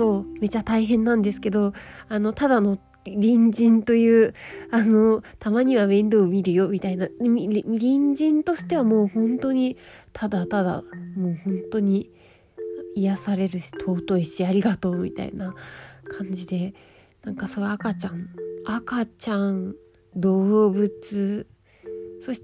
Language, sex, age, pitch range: Japanese, female, 20-39, 185-235 Hz